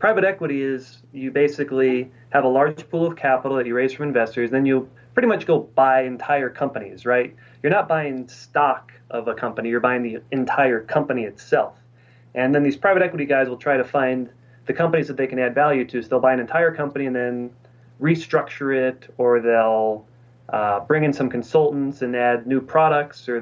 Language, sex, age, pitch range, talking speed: English, male, 30-49, 120-140 Hz, 200 wpm